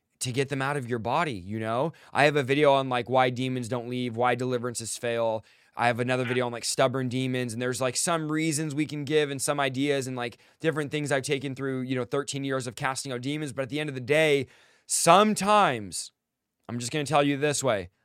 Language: English